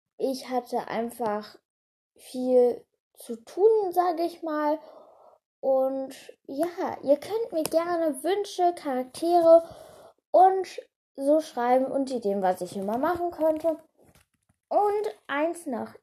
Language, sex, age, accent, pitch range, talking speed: German, female, 10-29, German, 225-330 Hz, 115 wpm